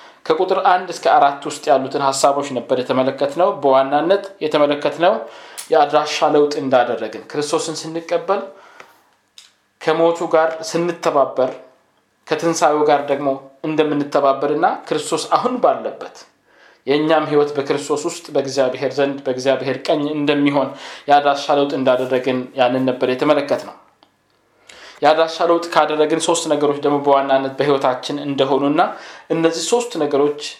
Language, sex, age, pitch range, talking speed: Amharic, male, 20-39, 140-160 Hz, 110 wpm